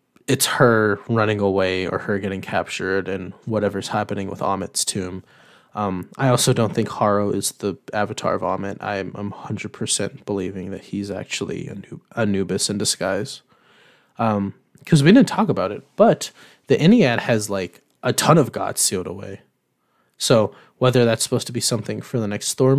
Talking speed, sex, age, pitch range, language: 175 wpm, male, 20-39, 100-125 Hz, English